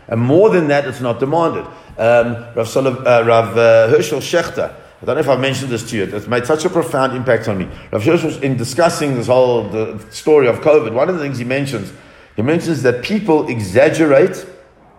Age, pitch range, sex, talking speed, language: 50-69, 115-145 Hz, male, 205 wpm, English